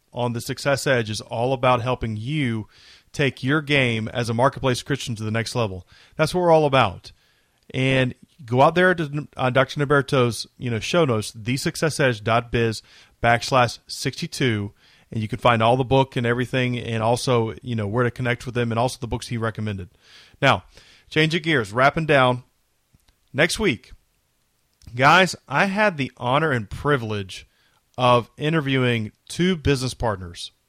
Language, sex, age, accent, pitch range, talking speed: English, male, 30-49, American, 120-155 Hz, 165 wpm